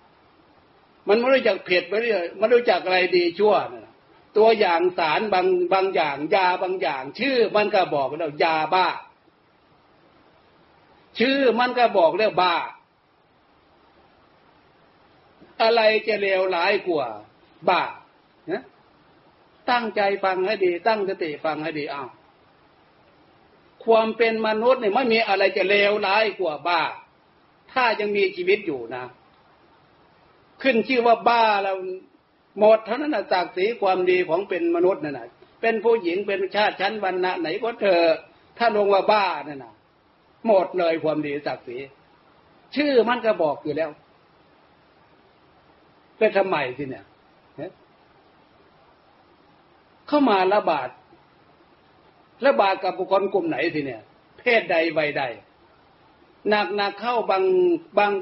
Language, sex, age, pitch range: Thai, male, 60-79, 185-230 Hz